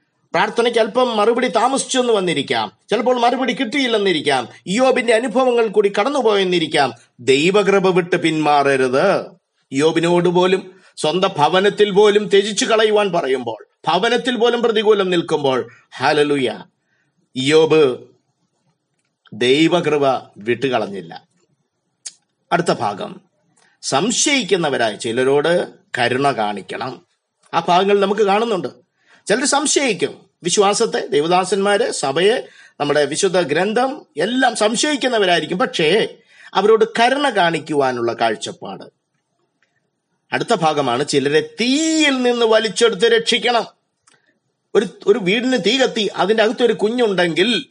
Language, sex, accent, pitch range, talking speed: Malayalam, male, native, 155-235 Hz, 90 wpm